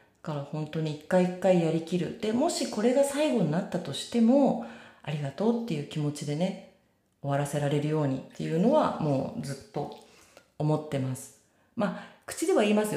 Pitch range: 145-215 Hz